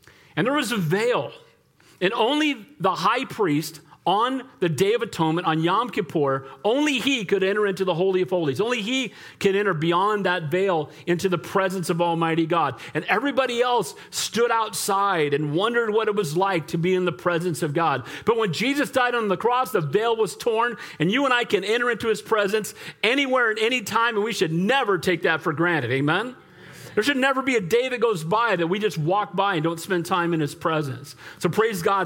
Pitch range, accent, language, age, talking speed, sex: 160-210 Hz, American, English, 40-59, 215 wpm, male